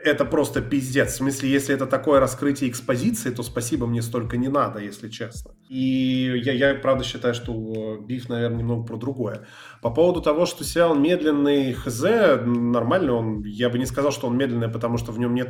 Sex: male